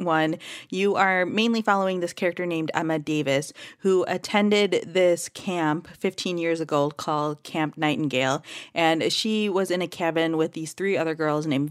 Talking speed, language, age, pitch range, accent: 165 wpm, English, 30-49, 150-185 Hz, American